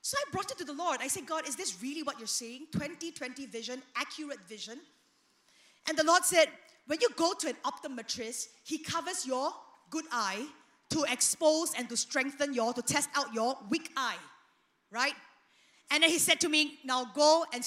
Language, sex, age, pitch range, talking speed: English, female, 20-39, 255-345 Hz, 195 wpm